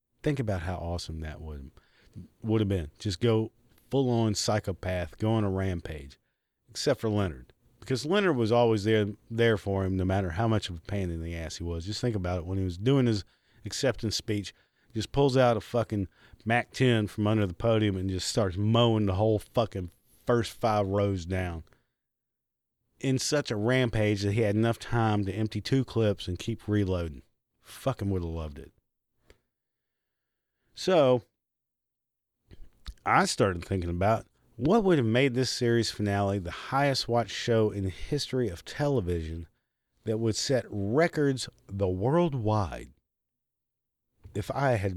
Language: English